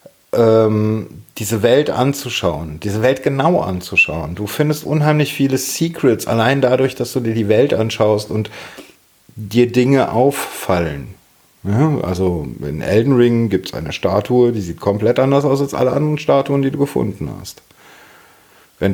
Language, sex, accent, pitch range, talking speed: German, male, German, 100-130 Hz, 145 wpm